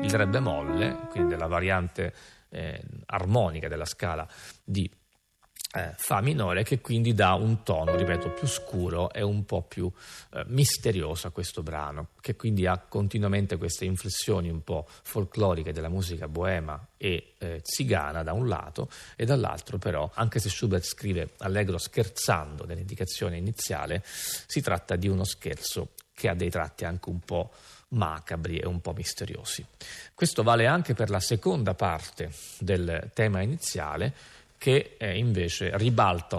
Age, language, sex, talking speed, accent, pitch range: 40-59, Italian, male, 150 wpm, native, 85-110 Hz